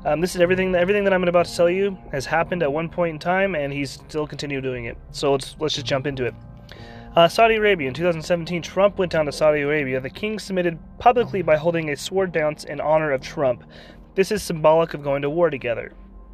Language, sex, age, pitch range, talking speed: English, male, 30-49, 140-175 Hz, 235 wpm